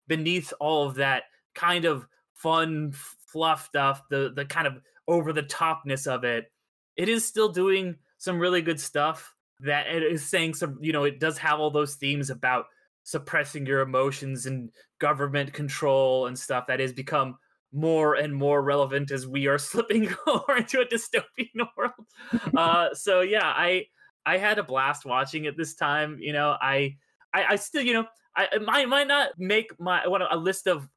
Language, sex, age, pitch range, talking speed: English, male, 20-39, 140-190 Hz, 185 wpm